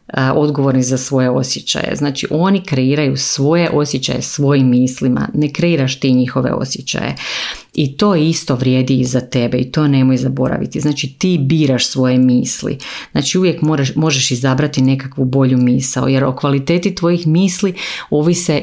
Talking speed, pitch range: 150 wpm, 130-155 Hz